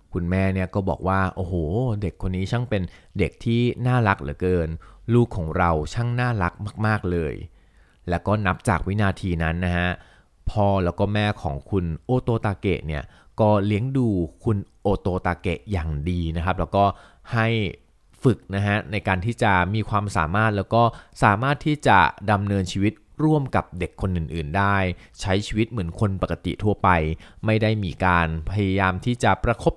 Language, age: Thai, 30-49